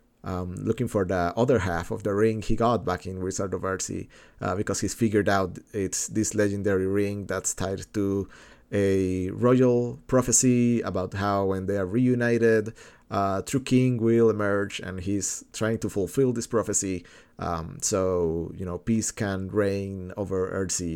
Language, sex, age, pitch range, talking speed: English, male, 30-49, 95-115 Hz, 165 wpm